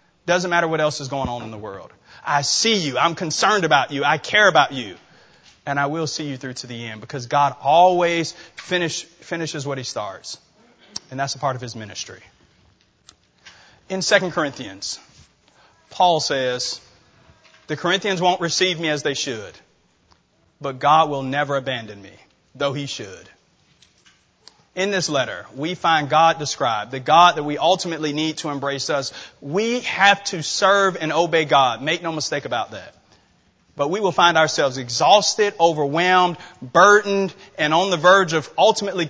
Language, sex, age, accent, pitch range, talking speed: English, male, 30-49, American, 145-185 Hz, 165 wpm